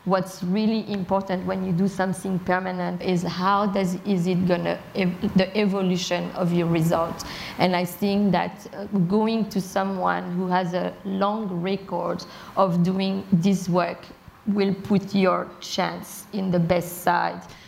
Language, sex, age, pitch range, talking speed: English, female, 30-49, 185-230 Hz, 150 wpm